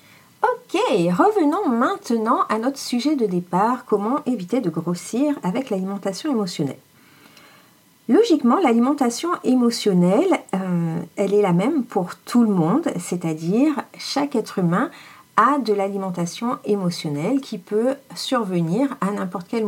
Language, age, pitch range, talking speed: French, 40-59, 175-245 Hz, 125 wpm